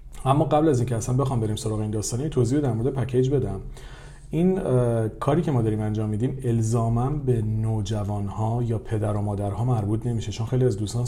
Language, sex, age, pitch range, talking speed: Persian, male, 40-59, 110-130 Hz, 200 wpm